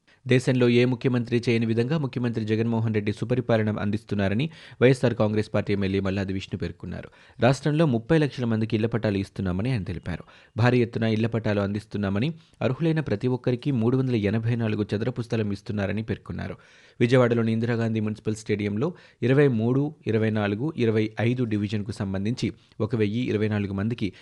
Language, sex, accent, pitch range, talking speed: Telugu, male, native, 105-125 Hz, 120 wpm